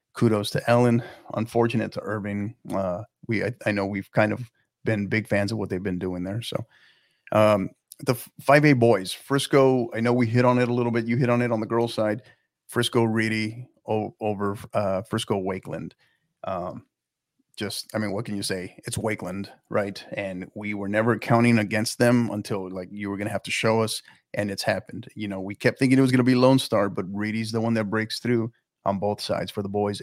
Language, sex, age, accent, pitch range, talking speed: English, male, 30-49, American, 105-120 Hz, 220 wpm